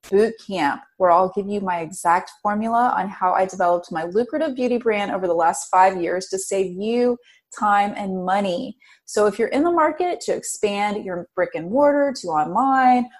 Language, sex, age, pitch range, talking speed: English, female, 30-49, 190-250 Hz, 190 wpm